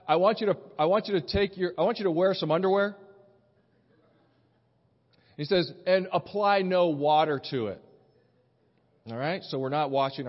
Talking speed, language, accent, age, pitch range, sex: 180 wpm, English, American, 40-59, 160-230 Hz, male